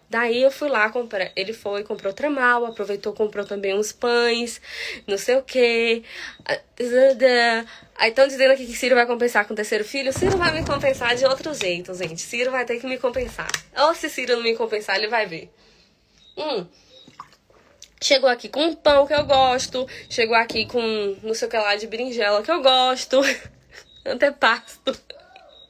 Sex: female